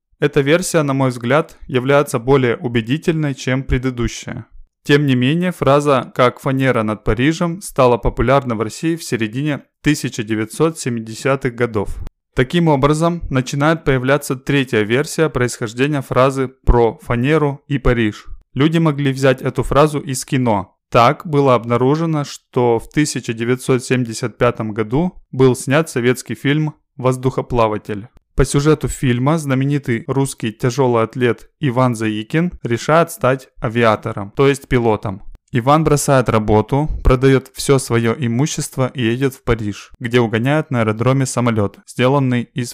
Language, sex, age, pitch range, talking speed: Russian, male, 20-39, 120-145 Hz, 125 wpm